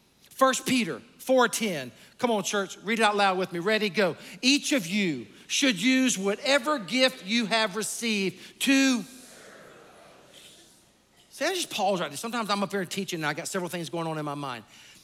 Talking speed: 190 wpm